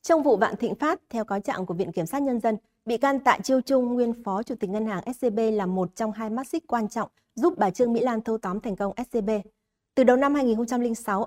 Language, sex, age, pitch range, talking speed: Vietnamese, female, 20-39, 195-240 Hz, 255 wpm